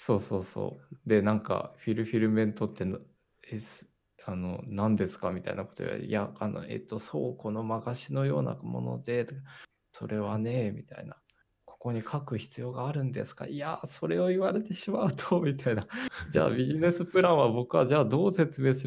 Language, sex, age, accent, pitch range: Japanese, male, 20-39, native, 100-130 Hz